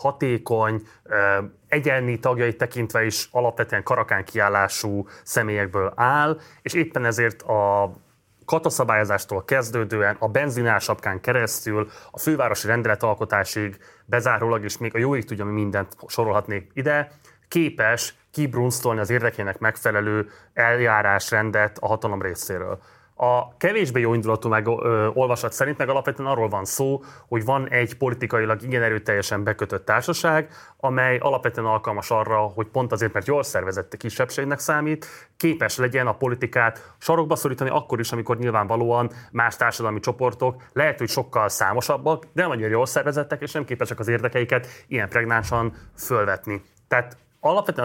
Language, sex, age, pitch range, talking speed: Hungarian, male, 20-39, 105-130 Hz, 130 wpm